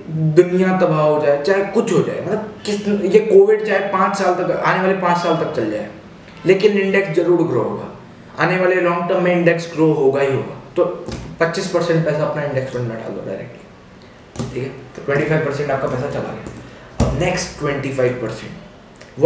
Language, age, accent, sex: Hindi, 20-39, native, male